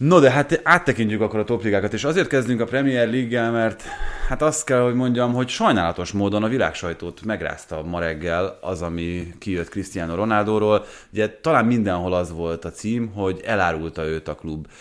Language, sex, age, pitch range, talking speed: Hungarian, male, 30-49, 85-105 Hz, 180 wpm